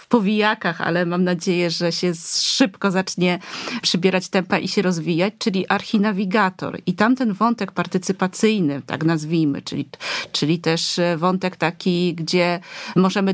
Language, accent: Polish, native